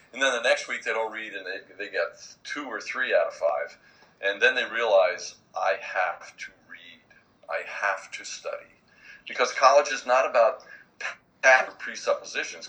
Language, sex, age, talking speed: English, male, 50-69, 170 wpm